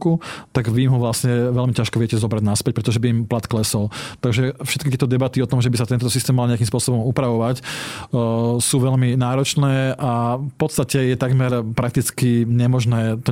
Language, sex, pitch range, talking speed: Slovak, male, 120-135 Hz, 185 wpm